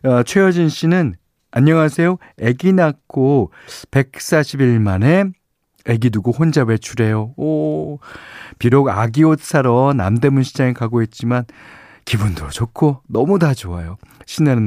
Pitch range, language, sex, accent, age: 105-150 Hz, Korean, male, native, 40-59